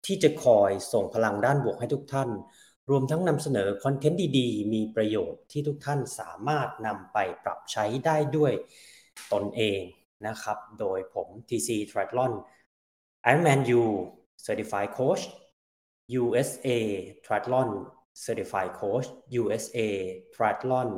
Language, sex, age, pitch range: Thai, male, 20-39, 100-130 Hz